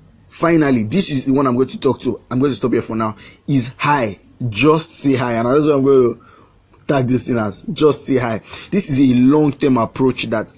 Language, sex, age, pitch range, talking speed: English, male, 20-39, 115-145 Hz, 225 wpm